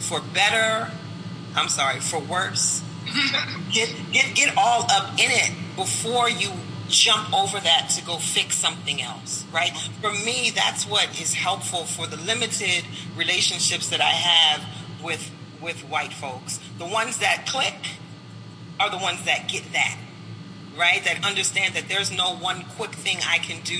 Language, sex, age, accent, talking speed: English, female, 40-59, American, 160 wpm